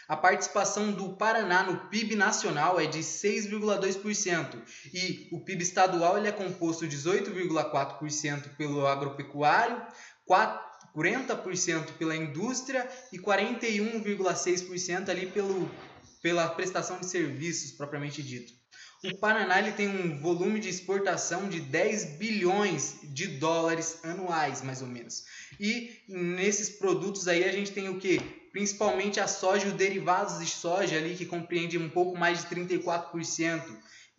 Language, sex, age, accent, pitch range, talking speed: Portuguese, male, 20-39, Brazilian, 160-195 Hz, 135 wpm